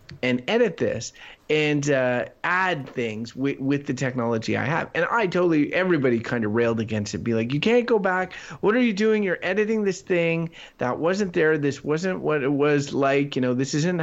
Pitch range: 120-155 Hz